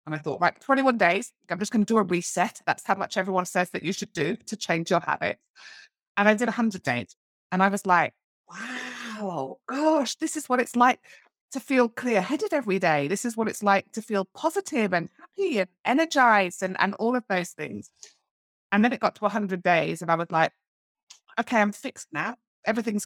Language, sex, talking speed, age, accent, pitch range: English, female, 220 wpm, 30-49, British, 170-225 Hz